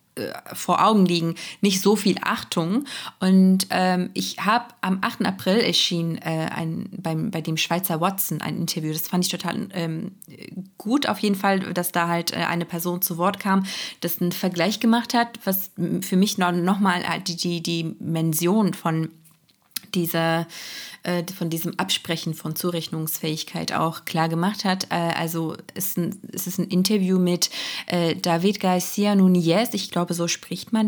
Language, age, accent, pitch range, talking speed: German, 20-39, German, 165-195 Hz, 150 wpm